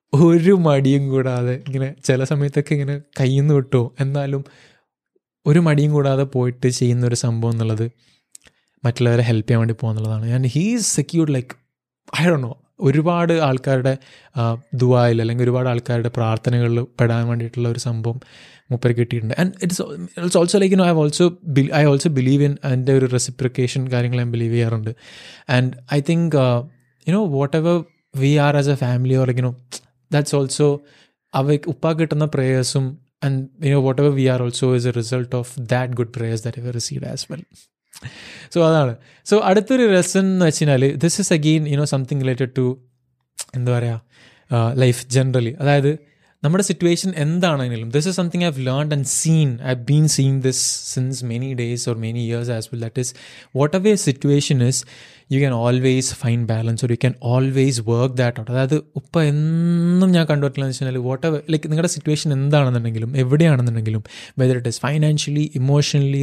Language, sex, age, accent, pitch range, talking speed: Malayalam, male, 20-39, native, 125-150 Hz, 165 wpm